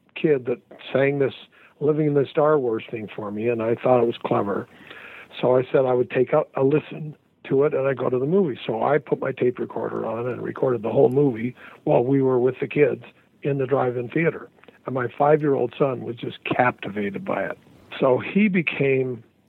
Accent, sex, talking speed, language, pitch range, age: American, male, 210 wpm, English, 120-150 Hz, 60-79